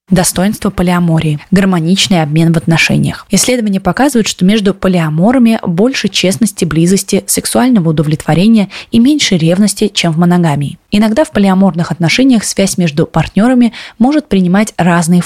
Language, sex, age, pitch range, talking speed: Russian, female, 20-39, 170-215 Hz, 120 wpm